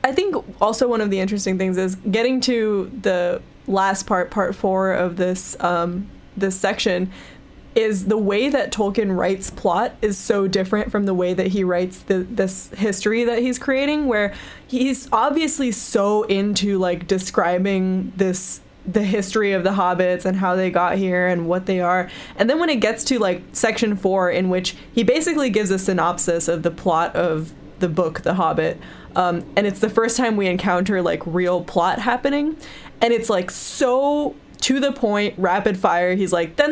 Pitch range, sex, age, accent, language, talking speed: 180-235 Hz, female, 10-29, American, English, 185 wpm